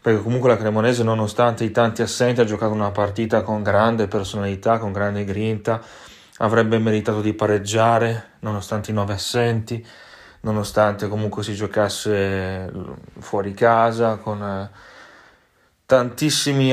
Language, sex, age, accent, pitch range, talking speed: Italian, male, 30-49, native, 105-125 Hz, 120 wpm